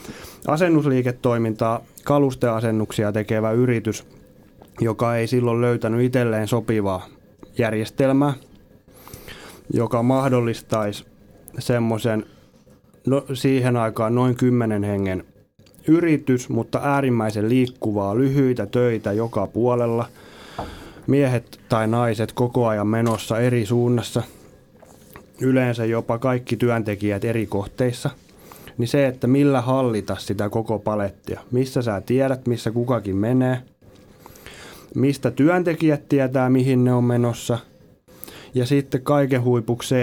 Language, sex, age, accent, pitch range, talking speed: Finnish, male, 30-49, native, 105-130 Hz, 100 wpm